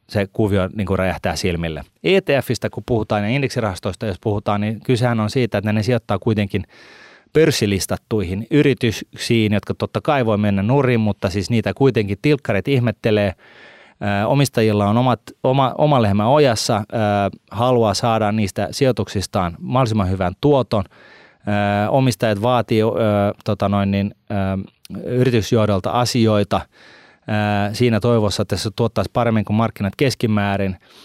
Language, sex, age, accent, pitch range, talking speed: Finnish, male, 30-49, native, 100-120 Hz, 135 wpm